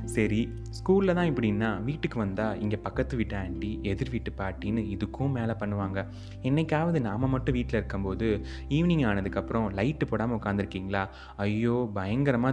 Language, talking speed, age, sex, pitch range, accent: Tamil, 135 wpm, 20-39, male, 100-120 Hz, native